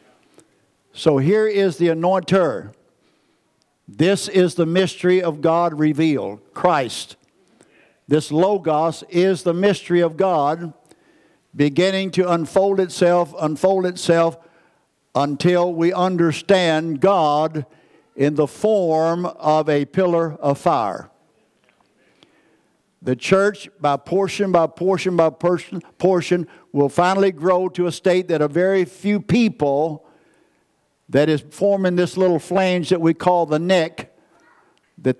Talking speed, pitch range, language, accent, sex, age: 120 wpm, 155-185 Hz, English, American, male, 60-79